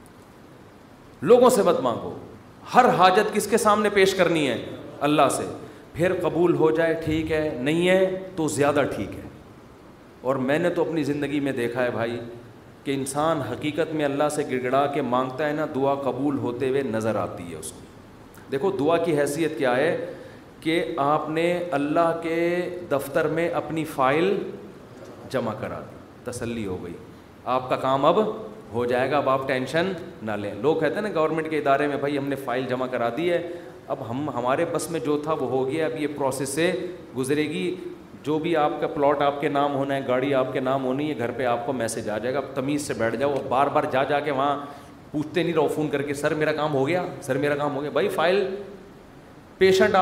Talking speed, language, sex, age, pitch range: 210 wpm, Urdu, male, 40-59, 135-165 Hz